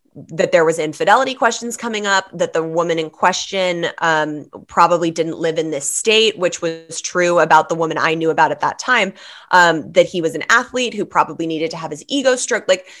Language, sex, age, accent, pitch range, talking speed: English, female, 20-39, American, 160-190 Hz, 210 wpm